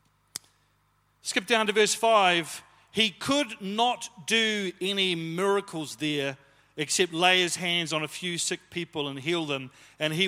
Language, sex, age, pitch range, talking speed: English, male, 40-59, 155-200 Hz, 150 wpm